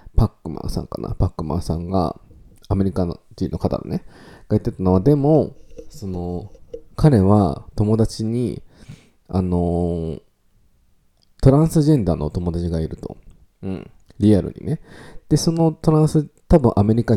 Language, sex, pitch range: Japanese, male, 90-120 Hz